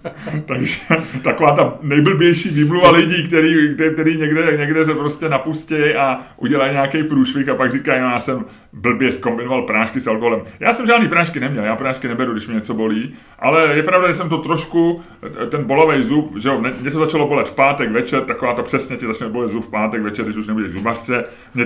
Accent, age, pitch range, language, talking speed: native, 30-49, 115-155 Hz, Czech, 210 wpm